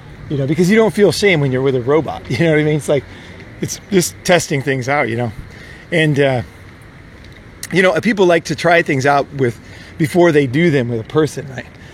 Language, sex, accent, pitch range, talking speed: English, male, American, 135-170 Hz, 225 wpm